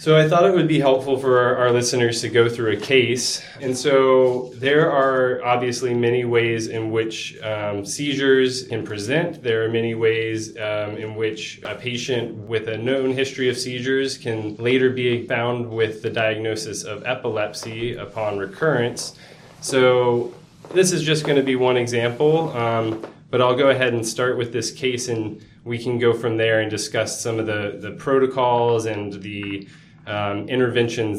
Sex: male